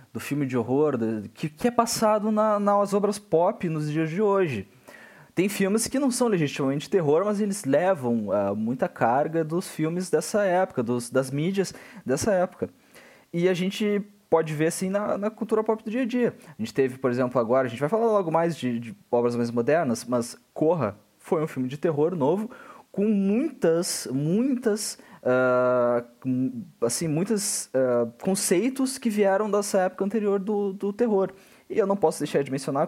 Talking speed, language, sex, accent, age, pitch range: 175 wpm, Portuguese, male, Brazilian, 20-39, 130-205 Hz